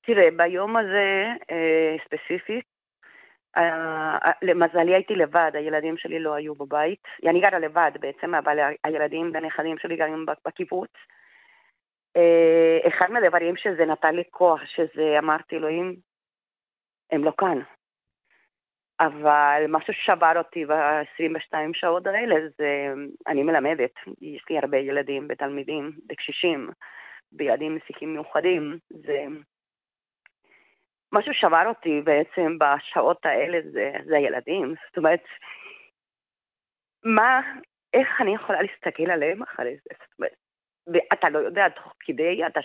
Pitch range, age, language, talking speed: 155-200 Hz, 30-49, Hebrew, 120 wpm